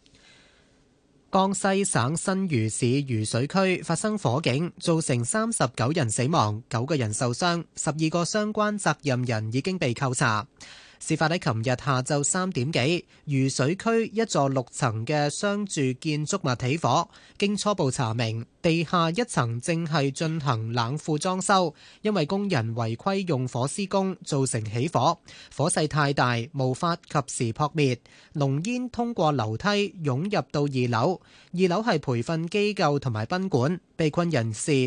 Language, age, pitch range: Chinese, 20-39, 125-175 Hz